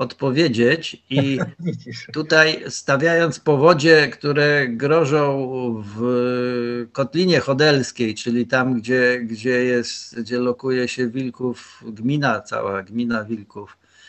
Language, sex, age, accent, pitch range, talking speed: Polish, male, 50-69, native, 120-150 Hz, 100 wpm